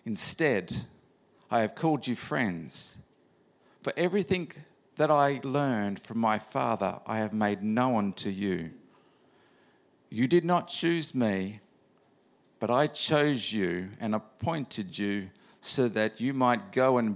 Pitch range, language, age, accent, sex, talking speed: 115-140 Hz, English, 50-69, Australian, male, 135 wpm